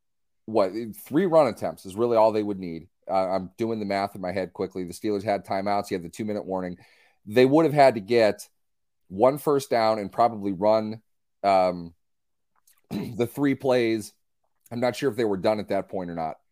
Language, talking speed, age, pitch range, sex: English, 205 wpm, 30-49, 100-135 Hz, male